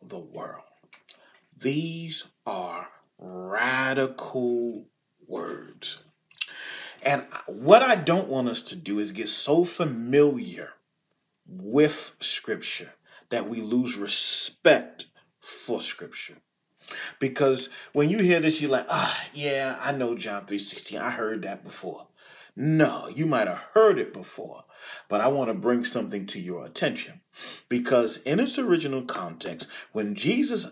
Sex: male